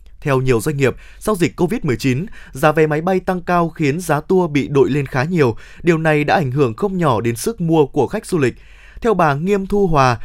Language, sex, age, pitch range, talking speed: Vietnamese, male, 20-39, 140-200 Hz, 235 wpm